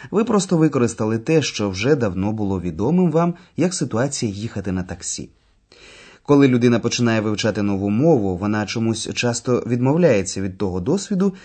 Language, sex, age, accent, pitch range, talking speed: Ukrainian, male, 20-39, native, 100-150 Hz, 145 wpm